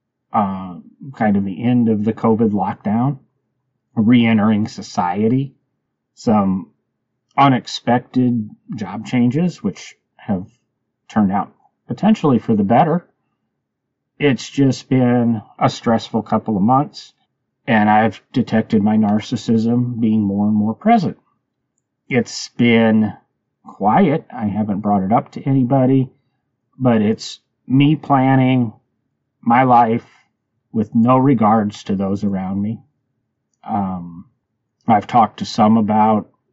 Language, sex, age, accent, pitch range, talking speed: English, male, 40-59, American, 110-135 Hz, 115 wpm